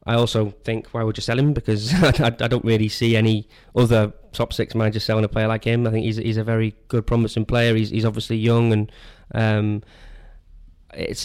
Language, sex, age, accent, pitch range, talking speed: English, male, 20-39, British, 105-115 Hz, 220 wpm